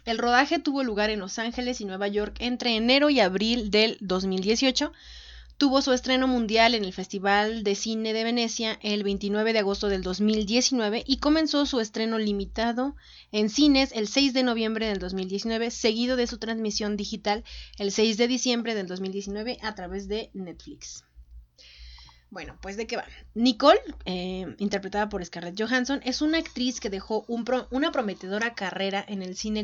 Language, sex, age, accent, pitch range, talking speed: Spanish, female, 30-49, Mexican, 200-250 Hz, 170 wpm